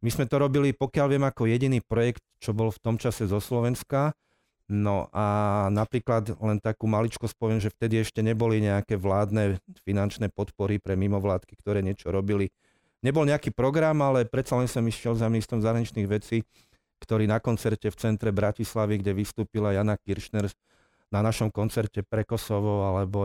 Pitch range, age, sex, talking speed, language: 105-115 Hz, 40-59, male, 165 wpm, Slovak